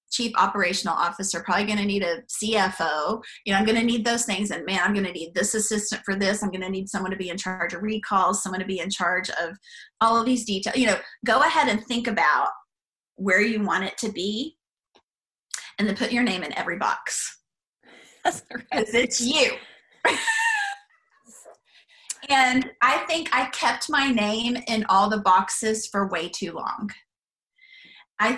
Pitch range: 190-235 Hz